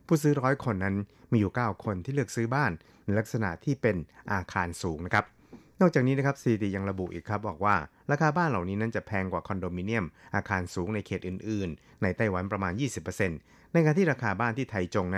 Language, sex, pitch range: Thai, male, 90-115 Hz